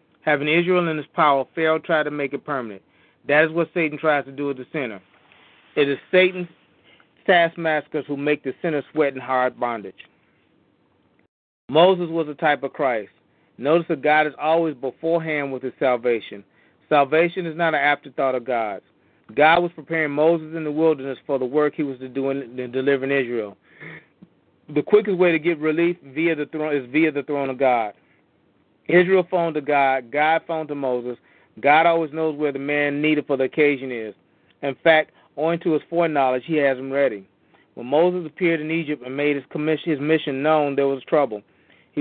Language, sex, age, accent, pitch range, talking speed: English, male, 30-49, American, 135-160 Hz, 190 wpm